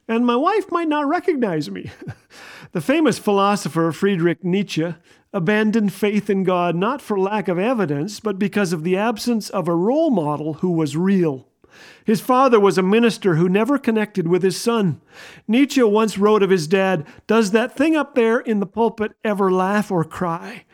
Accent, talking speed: American, 180 wpm